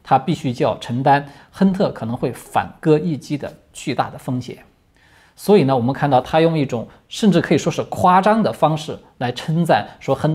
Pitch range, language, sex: 125-175 Hz, Chinese, male